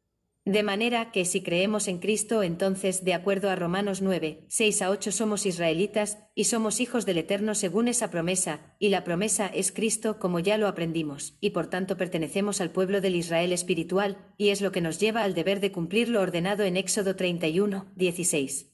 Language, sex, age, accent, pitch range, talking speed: Spanish, female, 40-59, Spanish, 175-205 Hz, 190 wpm